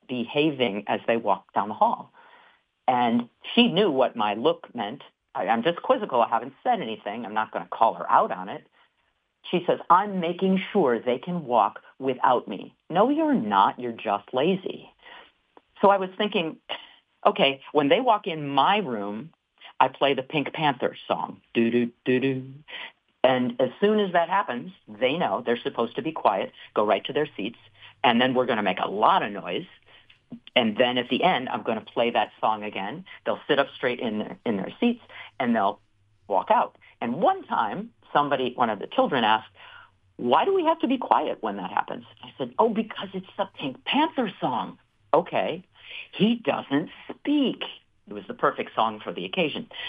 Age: 40-59